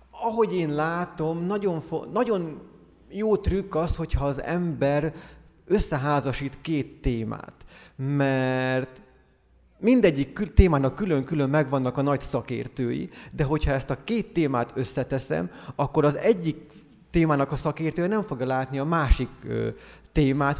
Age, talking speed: 30-49, 120 wpm